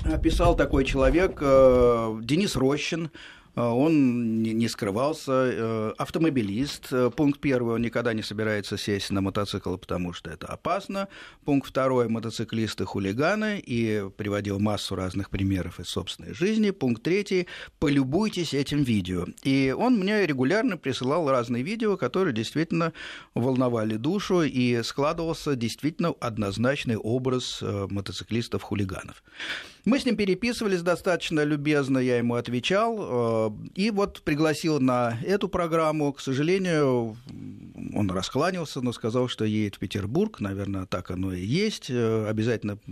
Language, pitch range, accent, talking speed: Russian, 110-155 Hz, native, 120 wpm